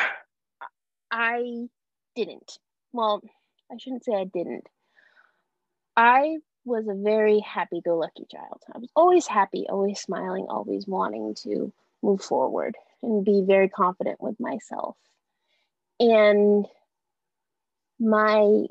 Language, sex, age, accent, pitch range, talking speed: English, female, 20-39, American, 190-230 Hz, 105 wpm